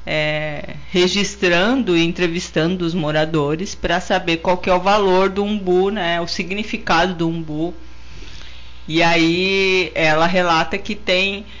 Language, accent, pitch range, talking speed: Portuguese, Brazilian, 145-190 Hz, 125 wpm